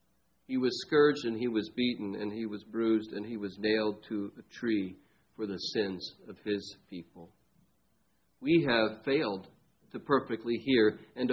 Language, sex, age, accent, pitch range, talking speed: English, male, 50-69, American, 110-145 Hz, 165 wpm